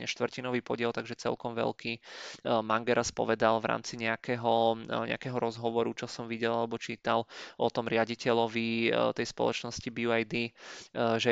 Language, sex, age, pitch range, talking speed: Czech, male, 20-39, 115-120 Hz, 120 wpm